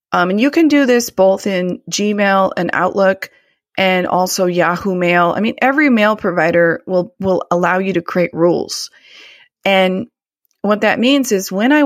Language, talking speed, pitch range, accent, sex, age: English, 170 wpm, 180-225 Hz, American, female, 30-49